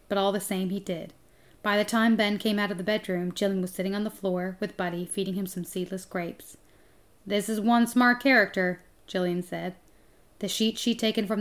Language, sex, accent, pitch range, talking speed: English, female, American, 185-220 Hz, 210 wpm